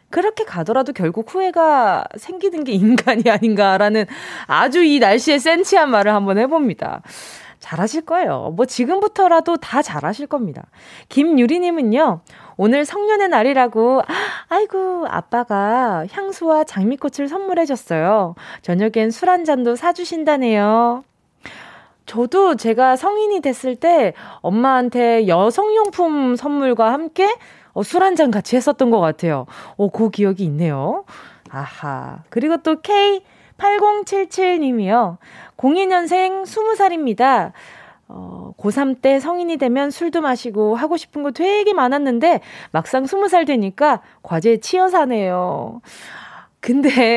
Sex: female